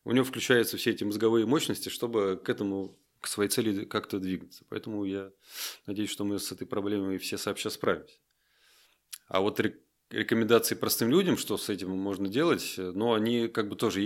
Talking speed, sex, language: 175 wpm, male, Russian